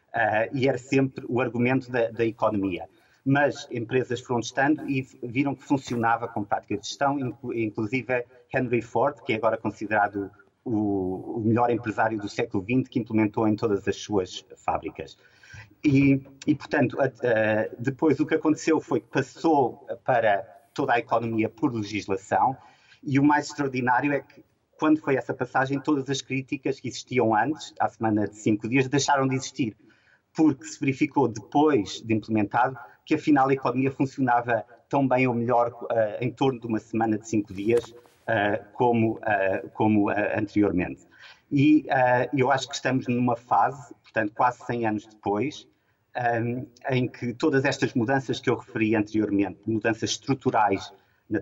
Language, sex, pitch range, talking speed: Portuguese, male, 110-135 Hz, 160 wpm